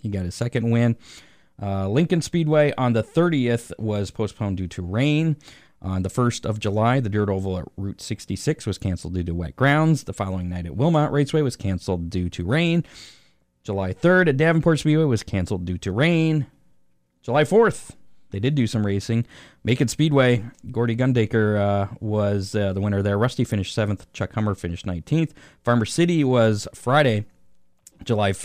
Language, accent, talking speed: English, American, 175 wpm